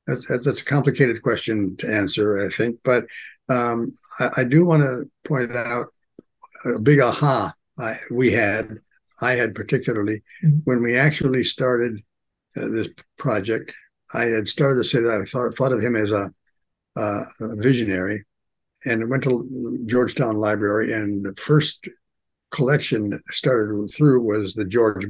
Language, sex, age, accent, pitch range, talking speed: English, male, 60-79, American, 110-135 Hz, 155 wpm